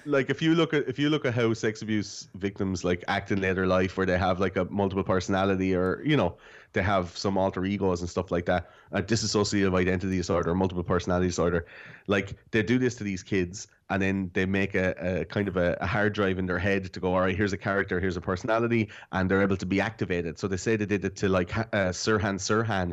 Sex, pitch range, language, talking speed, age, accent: male, 95-115 Hz, English, 245 wpm, 30-49, Irish